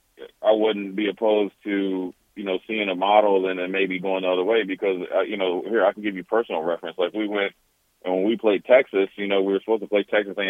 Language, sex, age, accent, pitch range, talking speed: English, male, 30-49, American, 95-115 Hz, 245 wpm